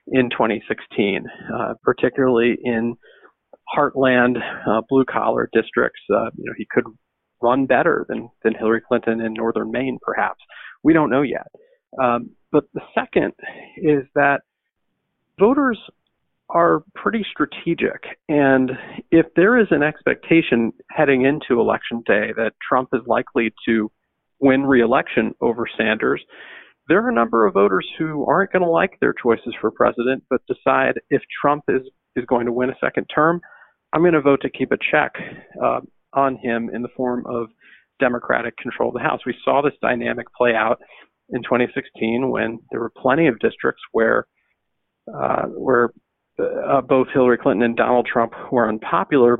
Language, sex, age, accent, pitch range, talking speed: English, male, 40-59, American, 115-150 Hz, 155 wpm